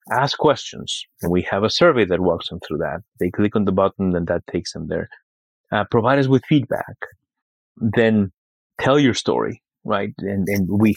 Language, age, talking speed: English, 30-49, 190 wpm